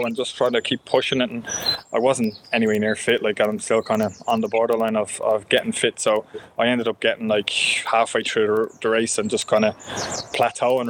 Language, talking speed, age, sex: English, 220 wpm, 20-39, male